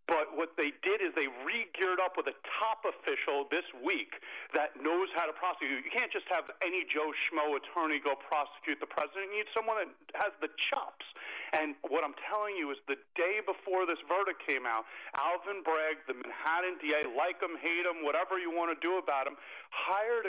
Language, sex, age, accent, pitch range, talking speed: English, male, 40-59, American, 155-225 Hz, 200 wpm